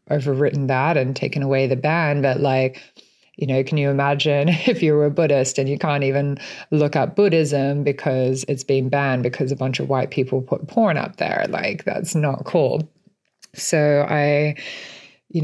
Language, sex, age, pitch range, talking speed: English, female, 20-39, 140-160 Hz, 185 wpm